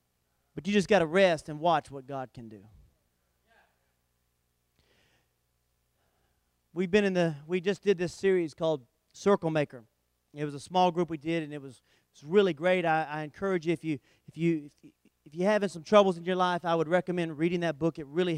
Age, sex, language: 40-59, male, English